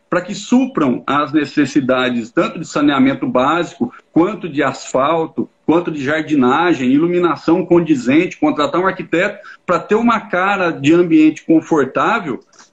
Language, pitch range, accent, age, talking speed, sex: Portuguese, 165-235 Hz, Brazilian, 50-69, 125 wpm, male